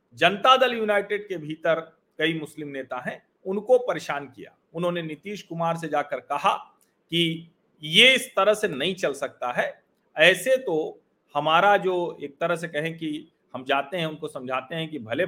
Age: 40-59